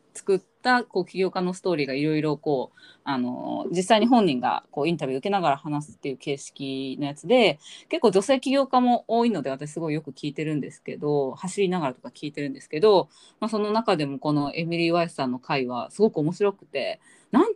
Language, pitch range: Japanese, 145-220 Hz